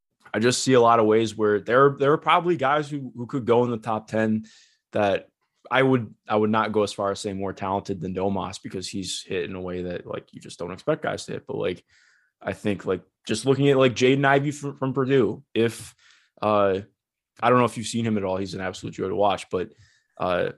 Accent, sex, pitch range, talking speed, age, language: American, male, 100-130 Hz, 245 wpm, 20-39, English